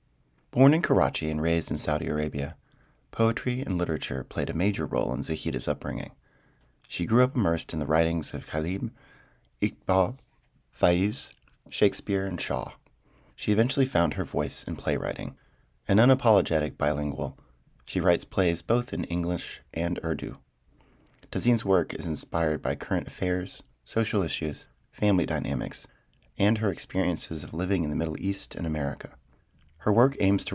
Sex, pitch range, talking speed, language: male, 75-100 Hz, 150 wpm, English